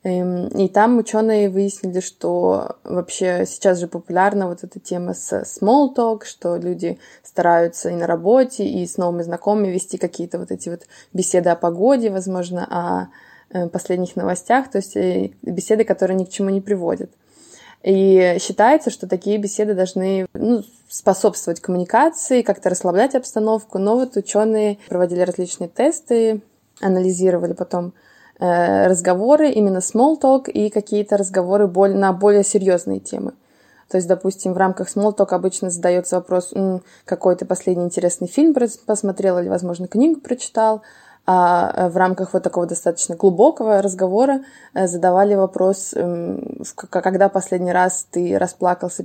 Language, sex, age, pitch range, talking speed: Russian, female, 20-39, 180-215 Hz, 135 wpm